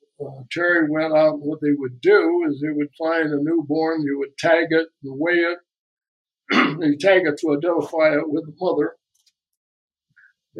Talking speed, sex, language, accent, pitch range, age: 180 wpm, male, English, American, 145-165 Hz, 60-79